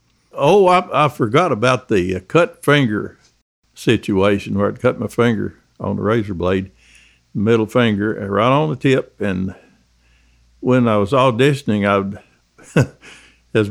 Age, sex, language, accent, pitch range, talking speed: 60-79, male, English, American, 100-130 Hz, 135 wpm